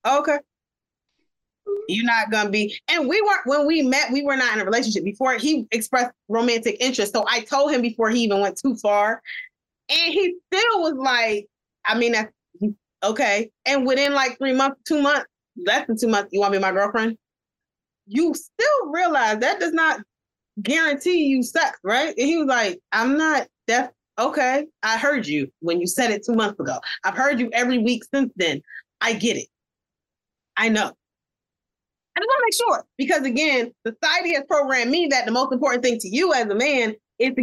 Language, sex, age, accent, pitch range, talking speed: English, female, 20-39, American, 215-280 Hz, 195 wpm